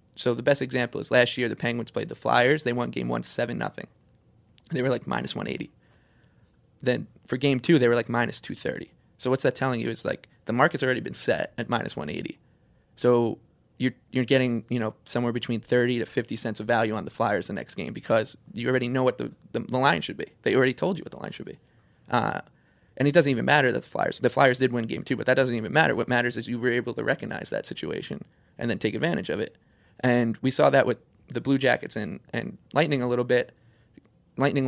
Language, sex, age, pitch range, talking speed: English, male, 20-39, 115-130 Hz, 240 wpm